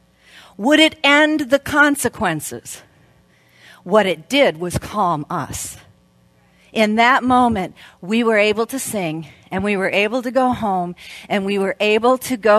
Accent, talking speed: American, 155 wpm